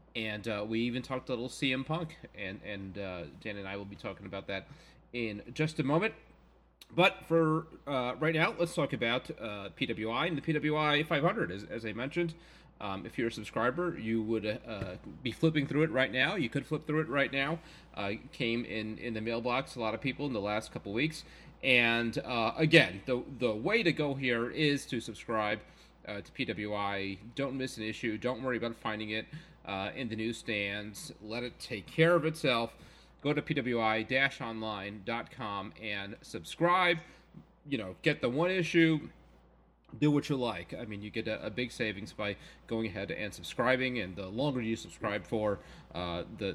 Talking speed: 190 wpm